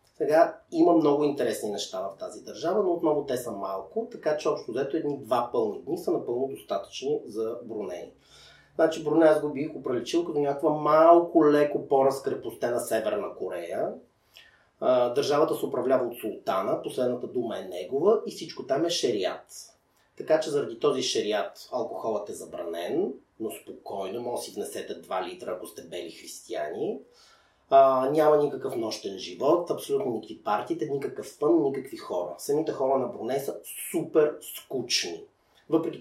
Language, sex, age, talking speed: Bulgarian, male, 30-49, 155 wpm